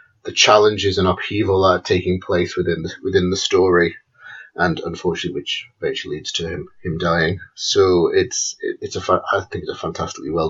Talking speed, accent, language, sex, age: 195 wpm, British, English, male, 30-49